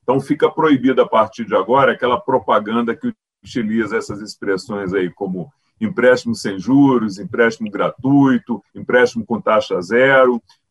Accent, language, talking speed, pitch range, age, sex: Brazilian, Portuguese, 135 wpm, 115-145 Hz, 40-59, male